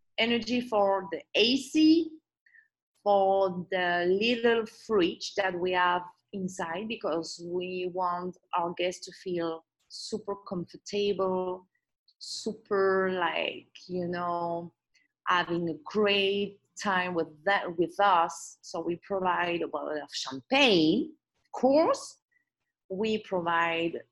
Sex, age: female, 30-49